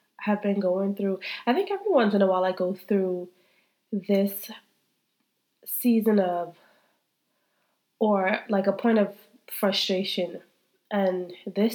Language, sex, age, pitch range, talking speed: English, female, 20-39, 180-215 Hz, 130 wpm